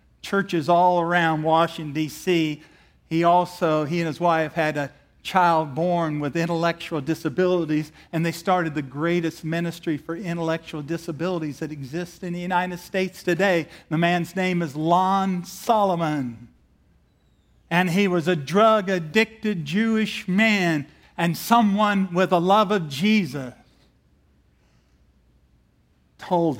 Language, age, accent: English, 50-69, American